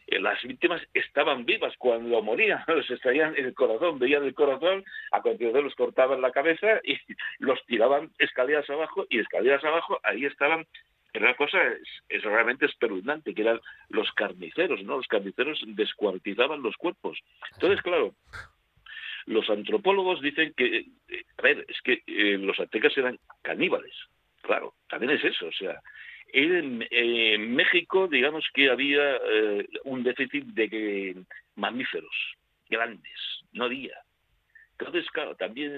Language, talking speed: Spanish, 145 wpm